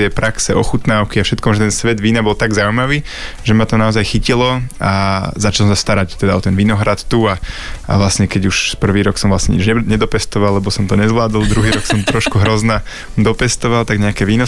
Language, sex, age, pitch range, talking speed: Slovak, male, 20-39, 100-115 Hz, 205 wpm